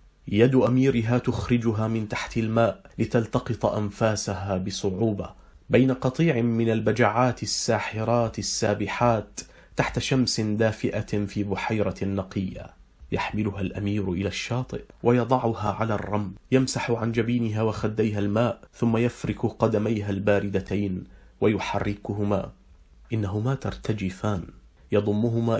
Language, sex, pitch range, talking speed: Arabic, male, 100-120 Hz, 95 wpm